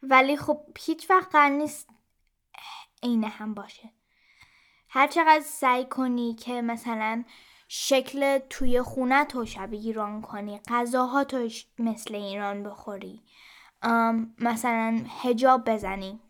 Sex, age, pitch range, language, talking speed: female, 10-29, 225-270 Hz, Persian, 105 wpm